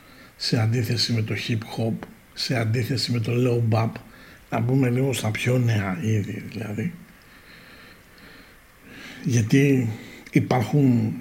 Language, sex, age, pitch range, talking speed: Greek, male, 60-79, 110-165 Hz, 105 wpm